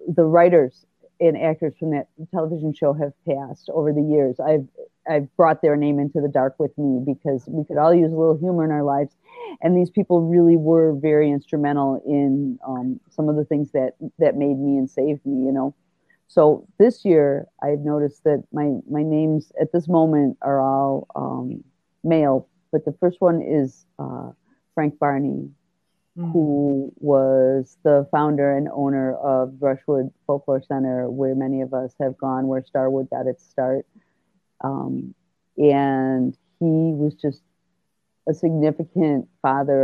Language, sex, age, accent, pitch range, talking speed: English, female, 50-69, American, 135-160 Hz, 165 wpm